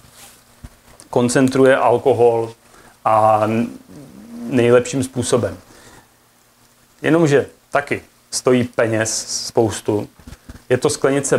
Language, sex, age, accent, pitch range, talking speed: Czech, male, 30-49, native, 115-140 Hz, 70 wpm